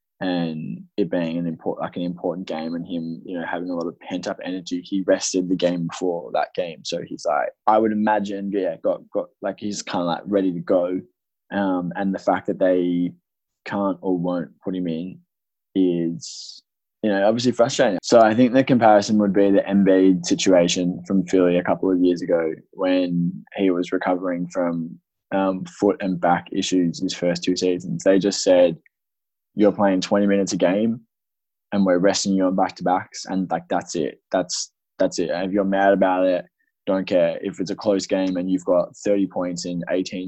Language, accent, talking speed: English, Australian, 200 wpm